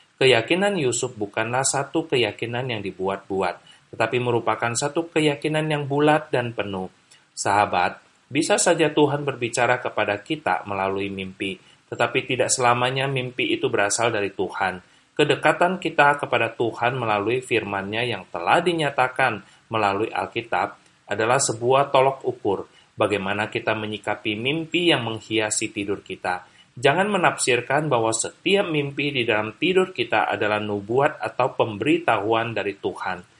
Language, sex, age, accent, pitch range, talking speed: Indonesian, male, 30-49, native, 110-150 Hz, 125 wpm